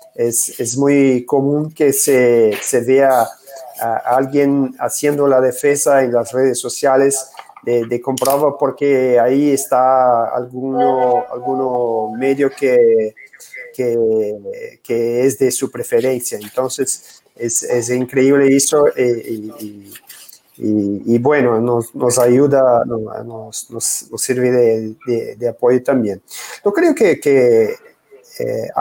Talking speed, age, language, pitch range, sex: 125 wpm, 30-49, Spanish, 120-145 Hz, male